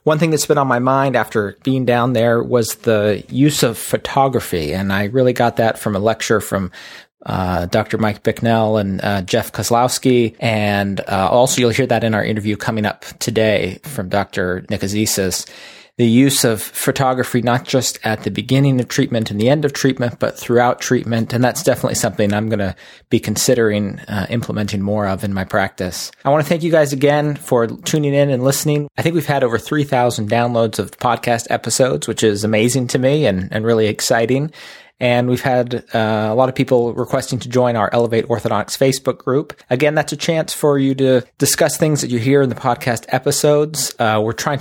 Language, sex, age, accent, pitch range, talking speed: English, male, 30-49, American, 110-135 Hz, 200 wpm